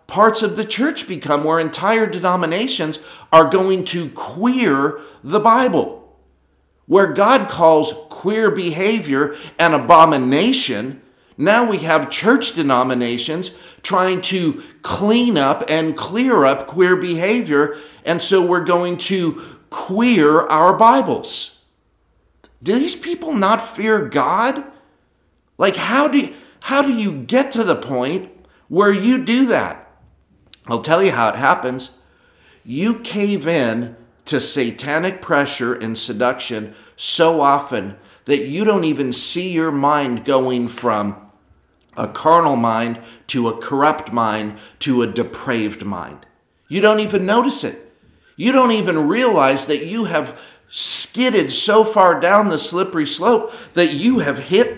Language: English